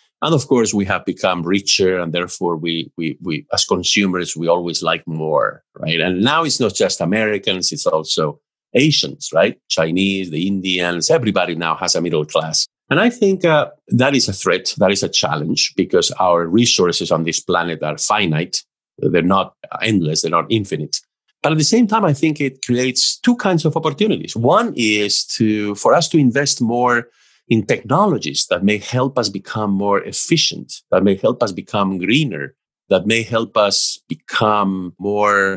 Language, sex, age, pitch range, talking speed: English, male, 50-69, 95-135 Hz, 180 wpm